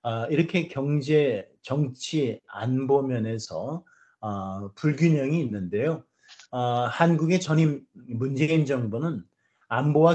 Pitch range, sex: 115-150 Hz, male